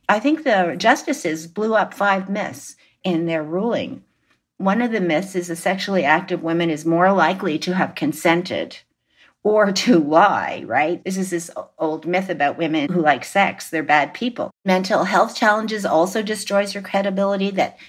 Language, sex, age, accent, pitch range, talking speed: English, female, 50-69, American, 165-200 Hz, 170 wpm